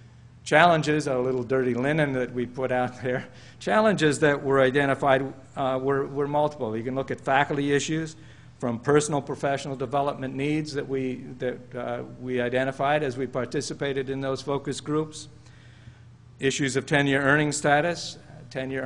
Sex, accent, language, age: male, American, English, 50-69